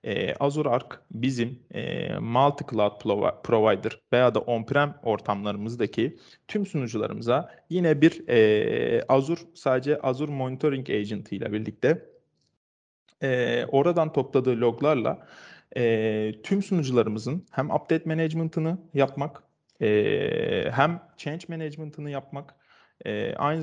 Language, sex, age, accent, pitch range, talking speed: Turkish, male, 40-59, native, 125-165 Hz, 90 wpm